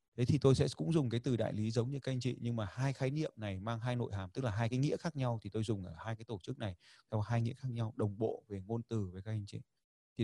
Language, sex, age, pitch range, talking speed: Vietnamese, male, 20-39, 105-130 Hz, 330 wpm